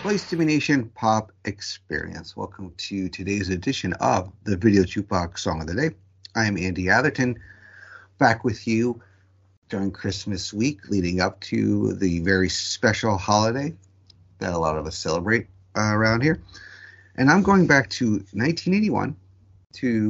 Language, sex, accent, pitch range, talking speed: English, male, American, 95-115 Hz, 145 wpm